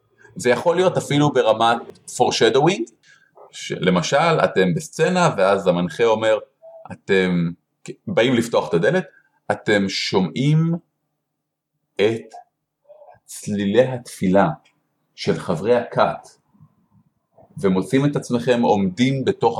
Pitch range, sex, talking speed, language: 100-165 Hz, male, 95 wpm, Hebrew